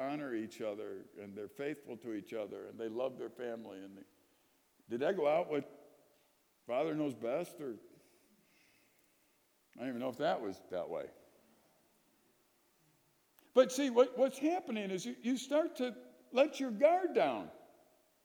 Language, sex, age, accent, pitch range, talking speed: English, male, 60-79, American, 225-330 Hz, 155 wpm